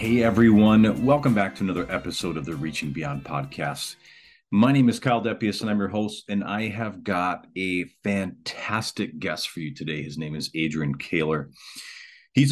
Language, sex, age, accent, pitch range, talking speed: English, male, 40-59, American, 80-105 Hz, 175 wpm